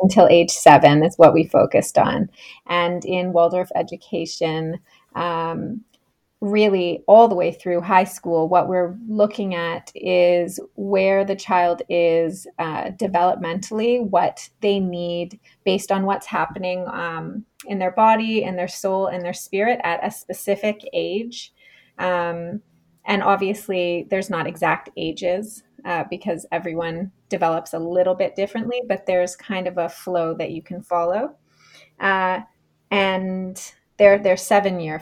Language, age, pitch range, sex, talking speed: English, 20-39, 170-205 Hz, female, 140 wpm